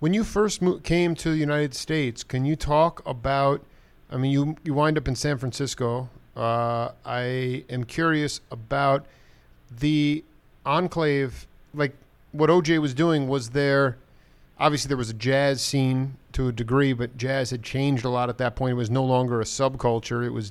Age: 40-59